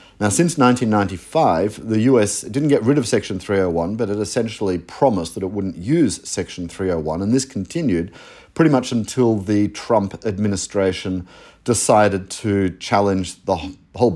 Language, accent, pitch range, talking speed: English, Australian, 95-120 Hz, 150 wpm